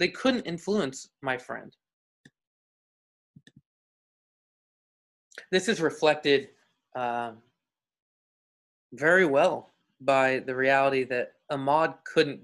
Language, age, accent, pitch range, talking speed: English, 20-39, American, 130-160 Hz, 80 wpm